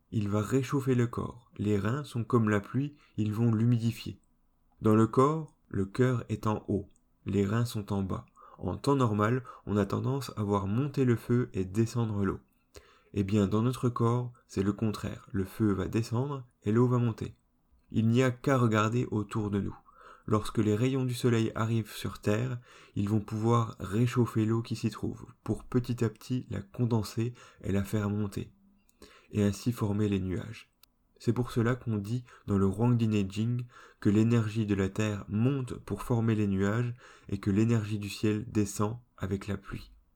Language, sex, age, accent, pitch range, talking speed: French, male, 20-39, French, 105-120 Hz, 185 wpm